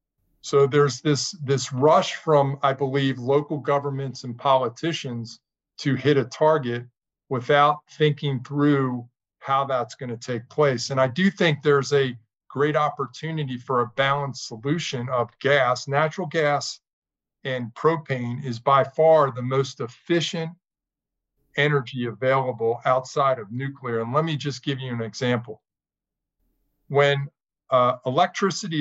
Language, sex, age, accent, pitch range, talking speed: English, male, 50-69, American, 125-150 Hz, 135 wpm